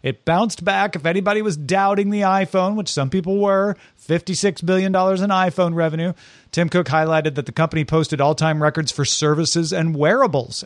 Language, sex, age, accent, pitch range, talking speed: English, male, 40-59, American, 130-175 Hz, 175 wpm